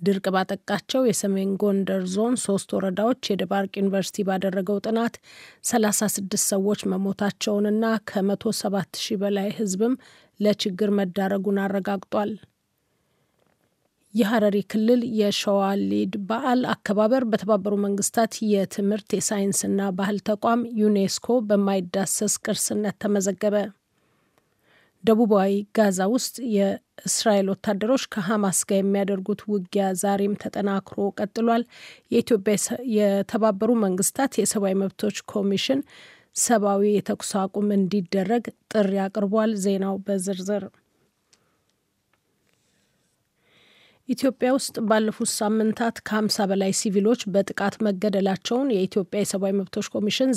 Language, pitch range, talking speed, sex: Amharic, 195-220 Hz, 85 wpm, female